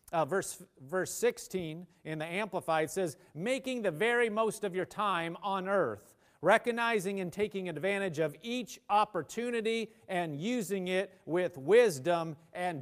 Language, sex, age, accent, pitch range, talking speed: English, male, 40-59, American, 165-225 Hz, 140 wpm